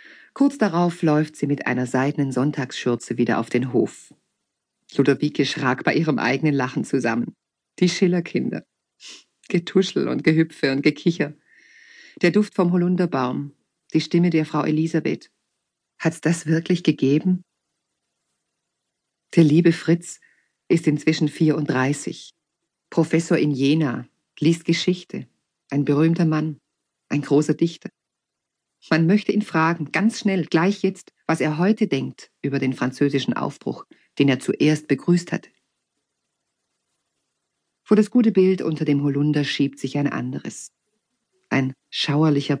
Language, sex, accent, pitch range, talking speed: German, female, German, 140-175 Hz, 125 wpm